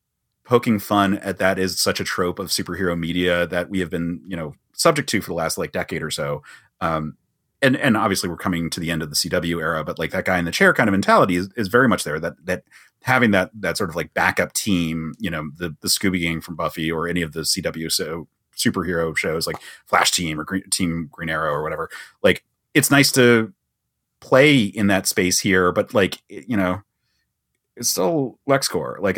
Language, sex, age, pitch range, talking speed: English, male, 30-49, 90-120 Hz, 220 wpm